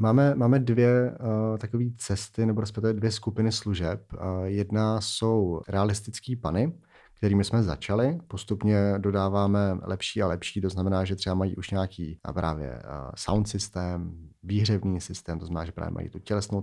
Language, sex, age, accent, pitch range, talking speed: Czech, male, 30-49, native, 95-110 Hz, 160 wpm